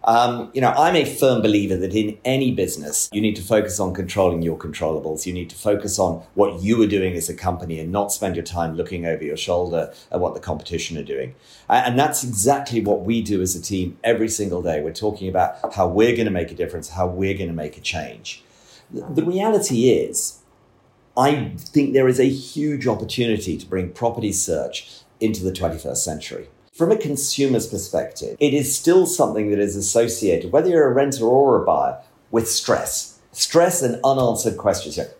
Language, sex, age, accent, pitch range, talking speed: English, male, 40-59, British, 100-140 Hz, 200 wpm